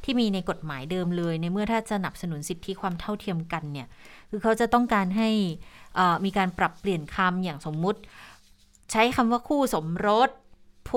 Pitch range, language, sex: 170-210 Hz, Thai, female